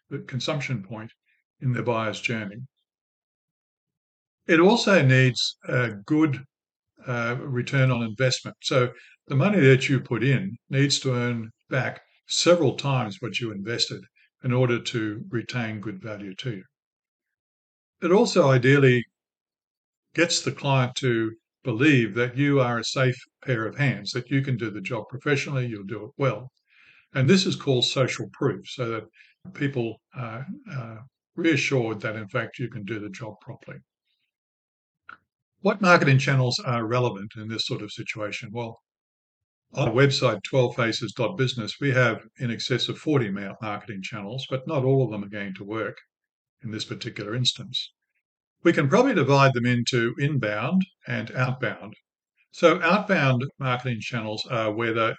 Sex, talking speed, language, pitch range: male, 150 wpm, English, 110-135 Hz